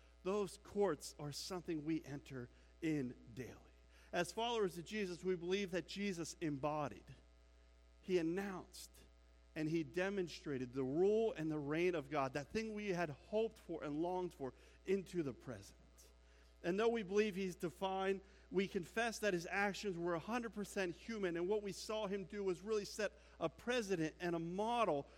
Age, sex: 50-69, male